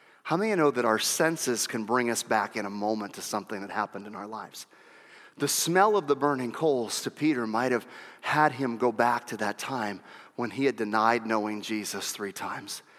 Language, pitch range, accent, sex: English, 135-220 Hz, American, male